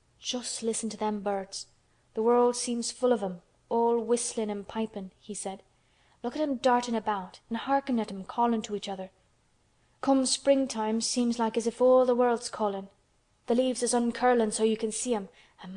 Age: 20-39